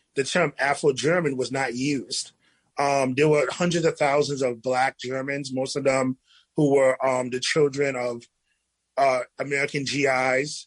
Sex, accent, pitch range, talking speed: male, American, 130-155 Hz, 150 wpm